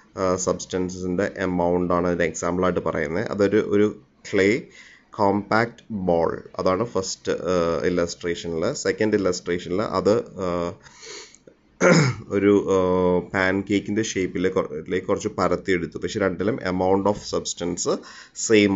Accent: Indian